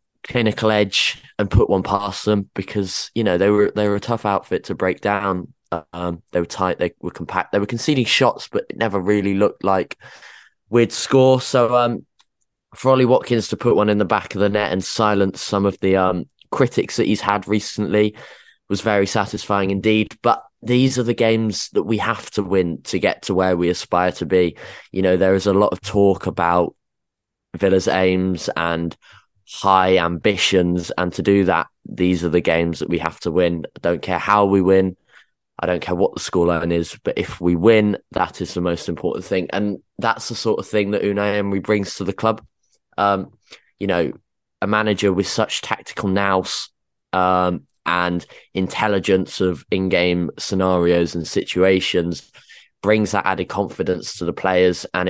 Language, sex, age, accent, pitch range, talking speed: English, male, 20-39, British, 90-105 Hz, 190 wpm